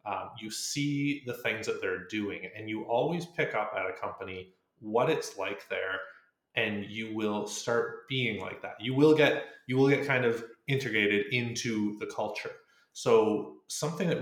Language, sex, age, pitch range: English, male, 30-49, 105-140 Hz